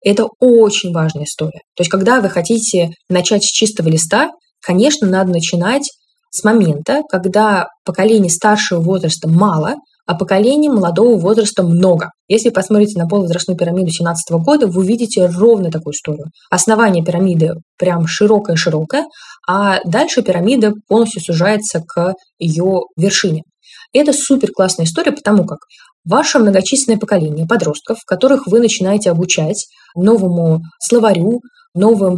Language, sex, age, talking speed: Russian, female, 20-39, 130 wpm